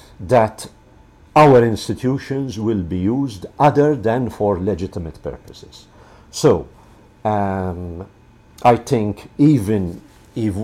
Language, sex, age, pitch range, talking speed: English, male, 50-69, 90-110 Hz, 95 wpm